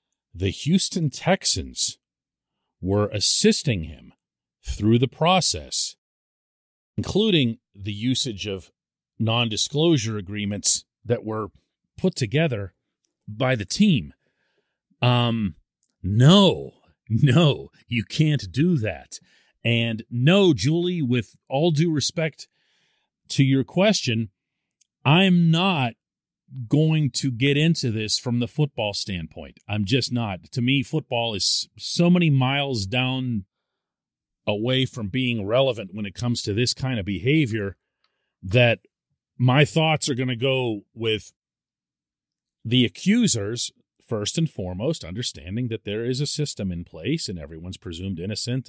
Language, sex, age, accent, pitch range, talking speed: English, male, 40-59, American, 105-150 Hz, 120 wpm